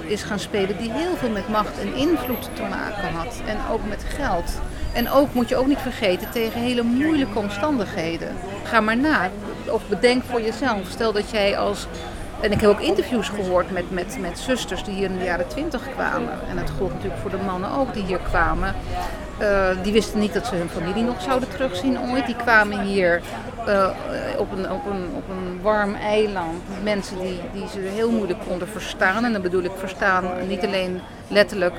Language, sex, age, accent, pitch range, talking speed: Dutch, female, 40-59, Dutch, 185-230 Hz, 200 wpm